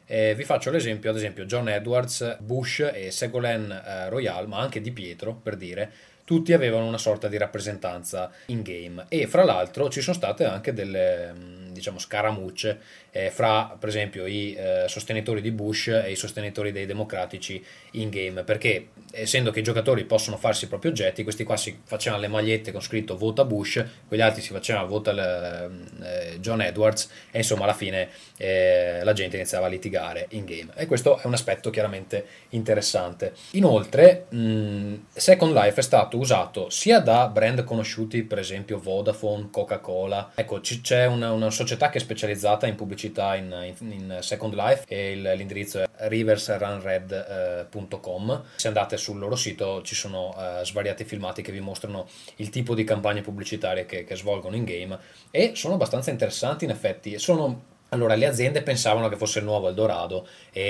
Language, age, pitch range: Italian, 20-39, 95-115 Hz